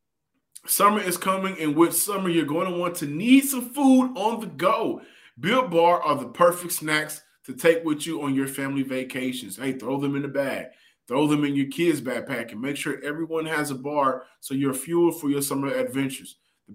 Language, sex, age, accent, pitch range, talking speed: English, male, 30-49, American, 145-185 Hz, 210 wpm